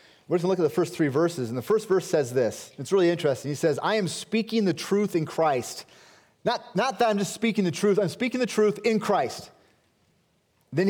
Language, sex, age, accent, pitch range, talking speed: English, male, 30-49, American, 160-220 Hz, 235 wpm